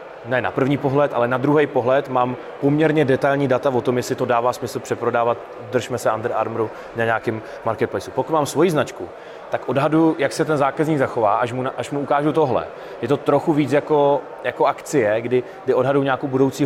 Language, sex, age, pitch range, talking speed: Czech, male, 20-39, 125-140 Hz, 200 wpm